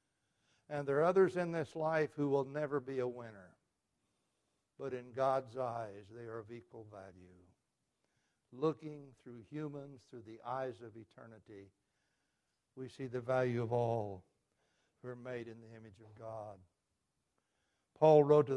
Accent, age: American, 60-79